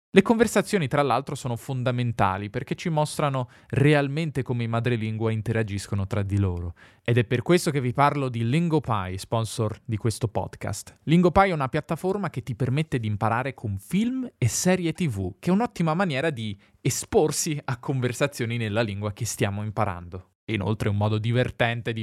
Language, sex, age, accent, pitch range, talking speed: Italian, male, 20-39, native, 110-150 Hz, 175 wpm